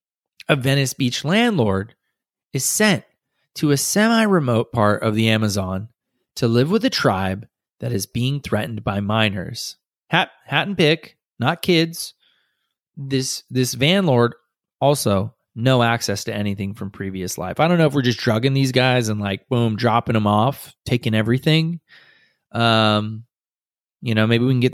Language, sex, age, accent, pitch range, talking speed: English, male, 20-39, American, 105-145 Hz, 165 wpm